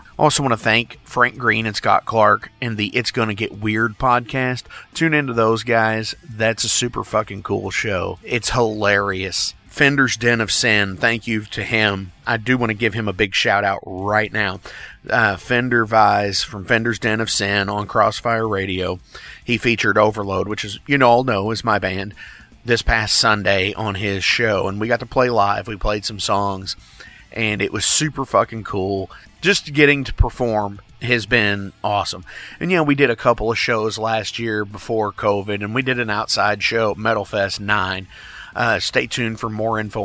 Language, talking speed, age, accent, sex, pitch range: English, 190 wpm, 30-49, American, male, 100-120 Hz